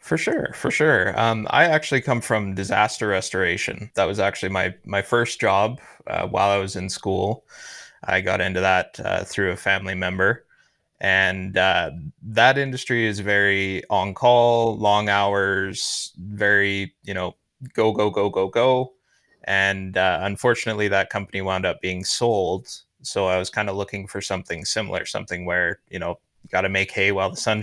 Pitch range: 95-115 Hz